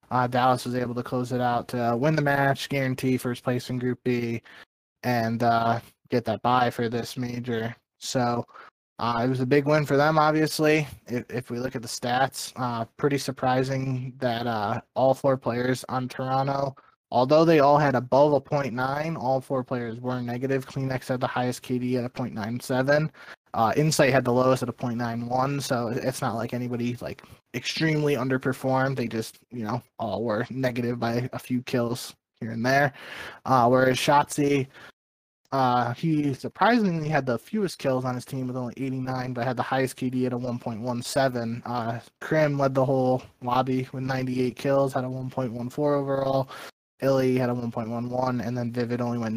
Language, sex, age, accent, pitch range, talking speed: English, male, 20-39, American, 120-135 Hz, 180 wpm